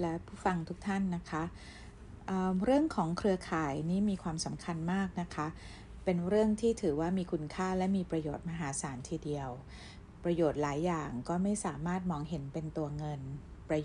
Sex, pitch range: female, 150-185 Hz